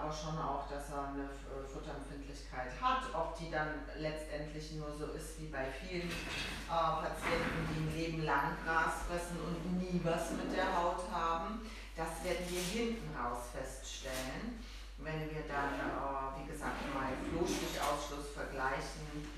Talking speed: 145 wpm